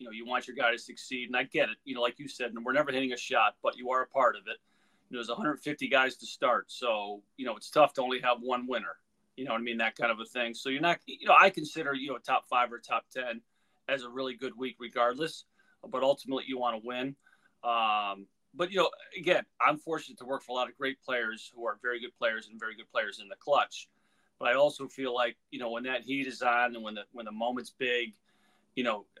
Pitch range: 120-135 Hz